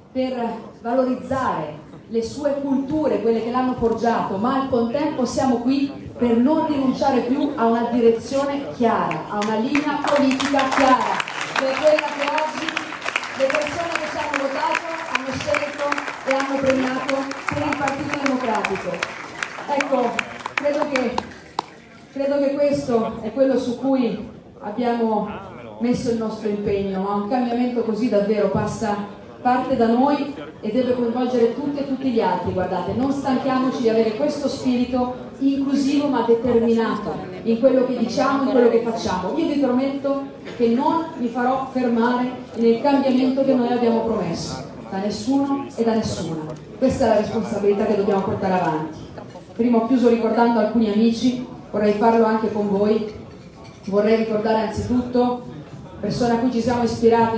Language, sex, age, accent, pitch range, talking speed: Italian, female, 30-49, native, 225-270 Hz, 150 wpm